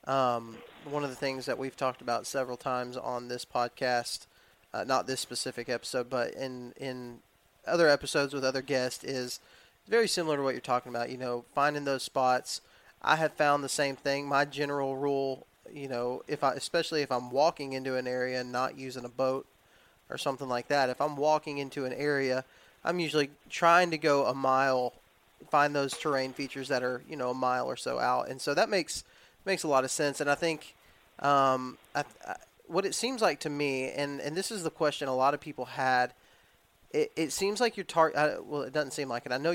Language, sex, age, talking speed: English, male, 20-39, 215 wpm